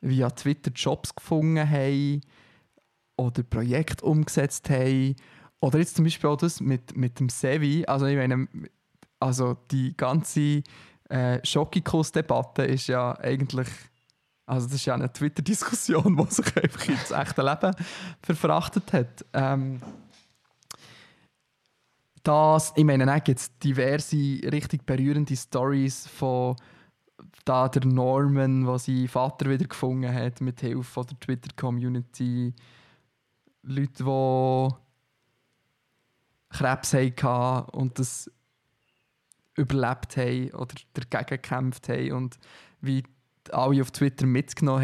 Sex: male